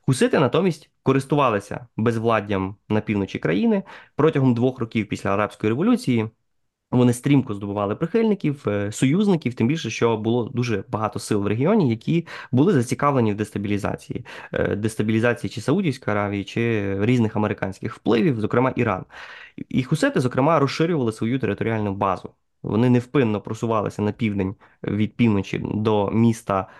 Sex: male